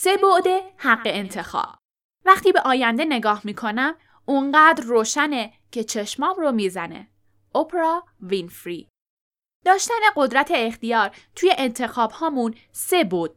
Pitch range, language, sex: 215-320 Hz, Persian, female